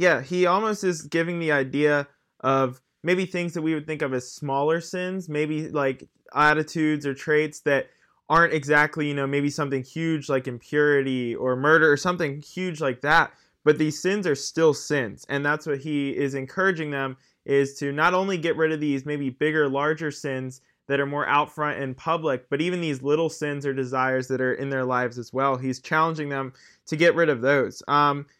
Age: 20-39